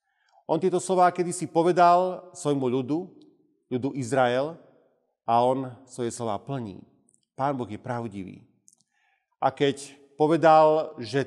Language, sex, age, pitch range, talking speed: Slovak, male, 40-59, 125-165 Hz, 115 wpm